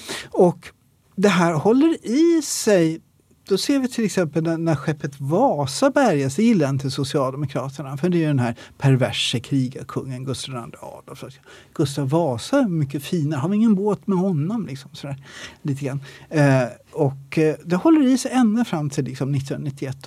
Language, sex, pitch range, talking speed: Swedish, male, 135-165 Hz, 155 wpm